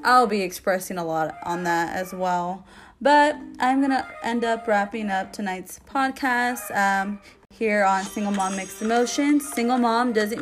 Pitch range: 225-265 Hz